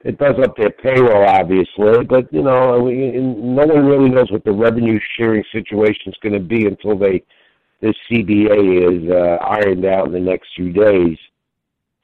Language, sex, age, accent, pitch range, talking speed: English, male, 60-79, American, 95-115 Hz, 180 wpm